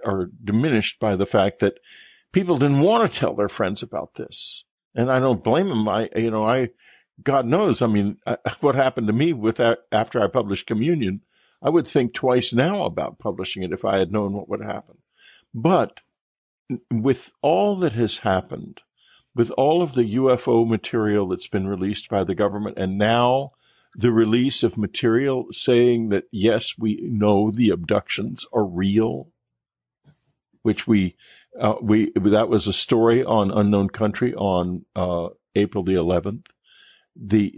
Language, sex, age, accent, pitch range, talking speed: English, male, 50-69, American, 100-125 Hz, 165 wpm